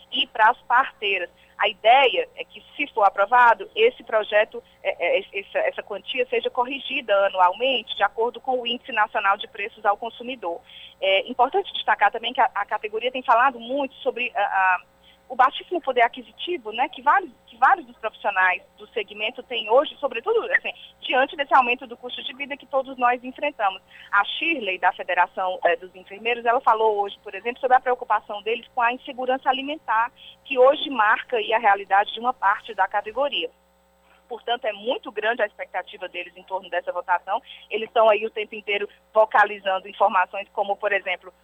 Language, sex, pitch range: Portuguese, female, 200-265 Hz